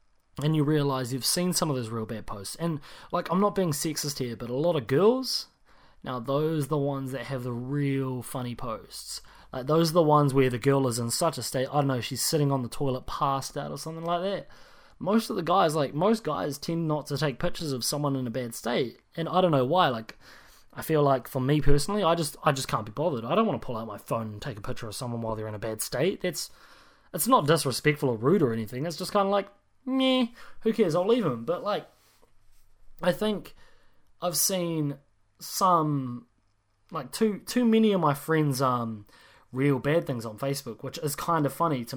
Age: 20-39